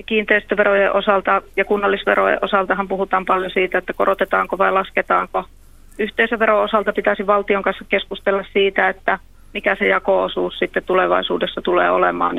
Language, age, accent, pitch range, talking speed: Finnish, 30-49, native, 180-205 Hz, 135 wpm